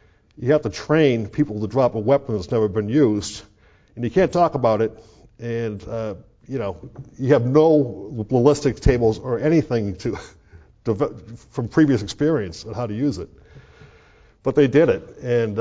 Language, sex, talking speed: English, male, 175 wpm